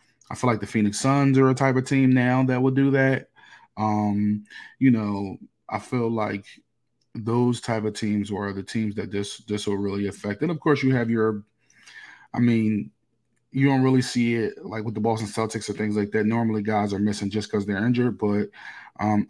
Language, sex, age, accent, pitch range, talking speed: English, male, 20-39, American, 105-115 Hz, 210 wpm